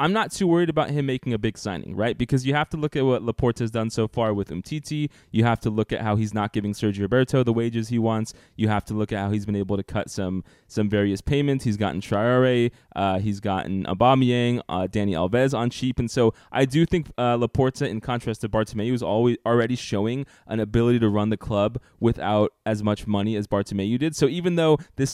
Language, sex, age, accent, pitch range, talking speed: English, male, 20-39, American, 105-130 Hz, 235 wpm